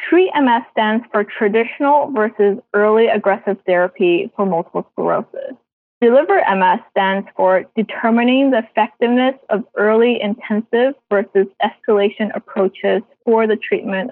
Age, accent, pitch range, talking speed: 20-39, American, 200-255 Hz, 110 wpm